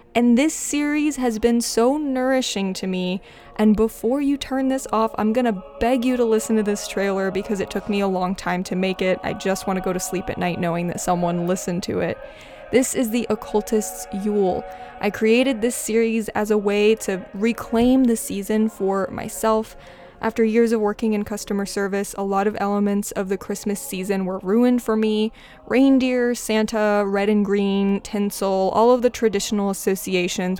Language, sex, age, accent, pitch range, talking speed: English, female, 20-39, American, 195-230 Hz, 190 wpm